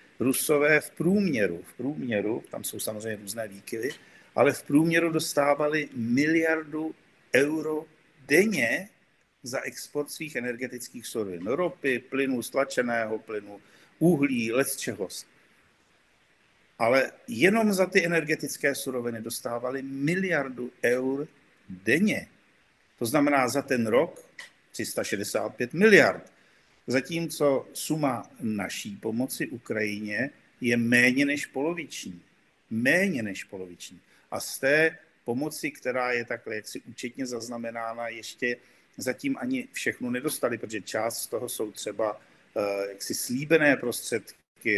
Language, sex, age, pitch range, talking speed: Slovak, male, 50-69, 120-155 Hz, 110 wpm